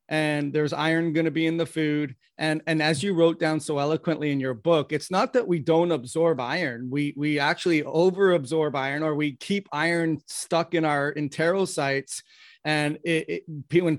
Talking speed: 195 wpm